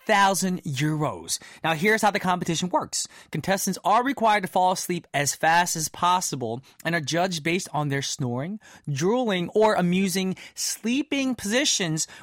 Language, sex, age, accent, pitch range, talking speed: English, male, 20-39, American, 155-210 Hz, 145 wpm